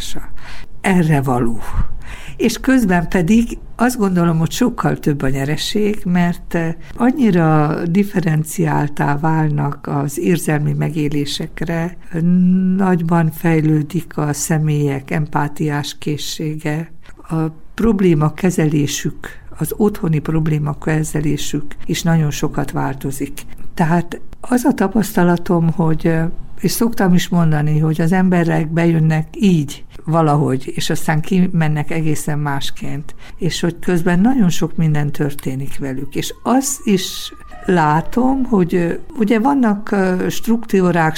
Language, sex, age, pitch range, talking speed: Hungarian, female, 60-79, 145-180 Hz, 105 wpm